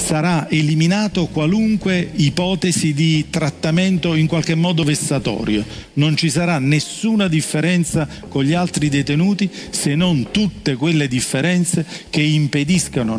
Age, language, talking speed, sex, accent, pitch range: 50-69, English, 120 wpm, male, Italian, 130-165 Hz